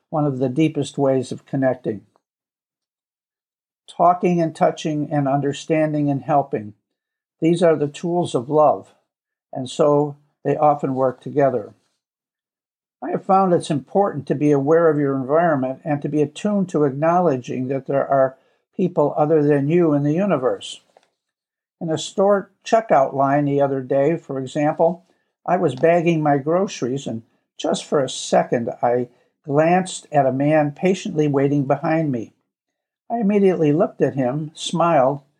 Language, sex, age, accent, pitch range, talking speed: English, male, 60-79, American, 140-175 Hz, 150 wpm